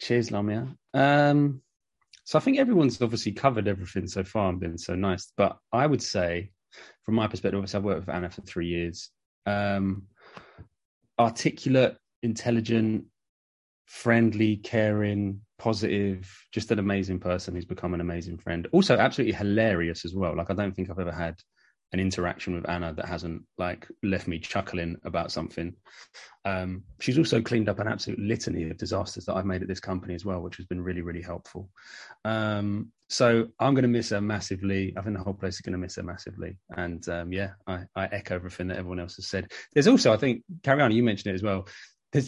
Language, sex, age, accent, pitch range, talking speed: English, male, 20-39, British, 90-110 Hz, 195 wpm